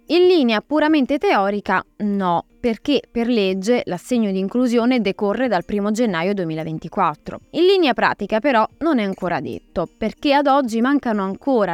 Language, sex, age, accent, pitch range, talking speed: Italian, female, 20-39, native, 185-245 Hz, 150 wpm